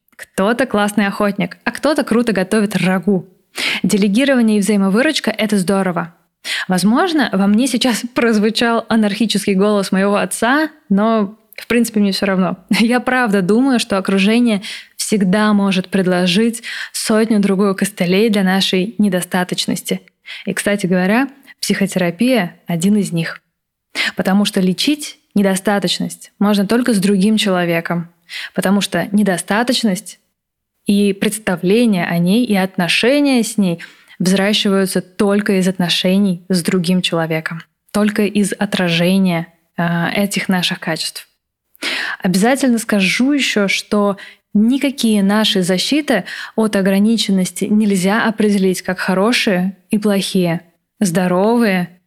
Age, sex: 20-39, female